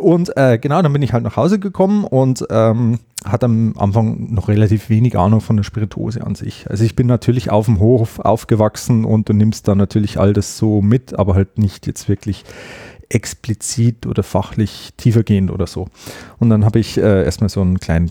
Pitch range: 100-125 Hz